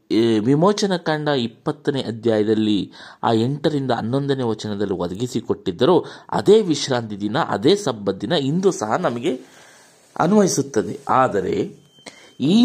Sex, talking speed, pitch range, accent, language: male, 95 wpm, 105-155 Hz, native, Kannada